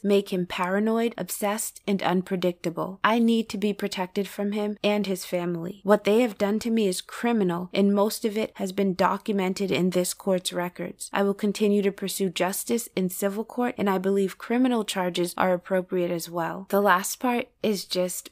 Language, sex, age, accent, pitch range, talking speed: English, female, 20-39, American, 175-200 Hz, 190 wpm